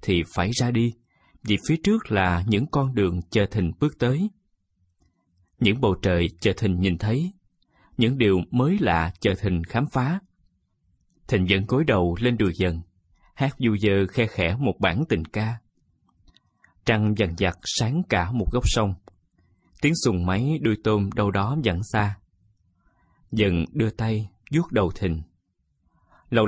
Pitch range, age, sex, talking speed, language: 90-120 Hz, 20-39, male, 160 wpm, Vietnamese